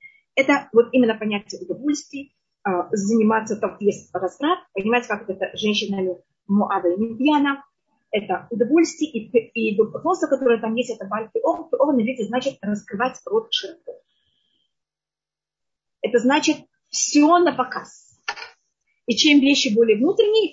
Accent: native